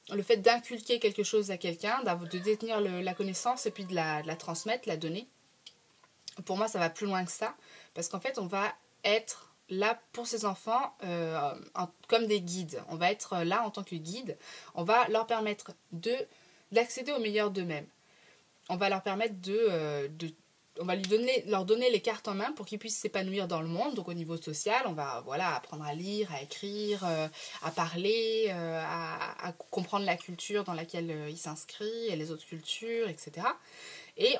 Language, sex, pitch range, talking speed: French, female, 170-225 Hz, 190 wpm